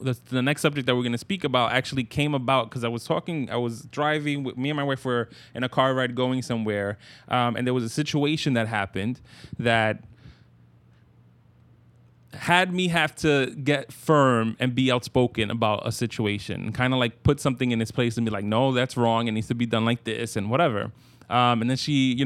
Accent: American